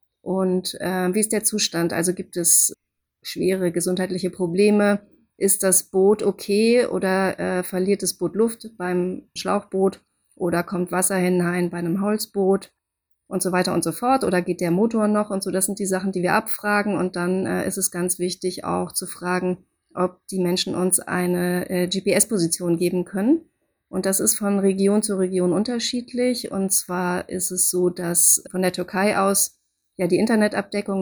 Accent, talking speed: German, 175 wpm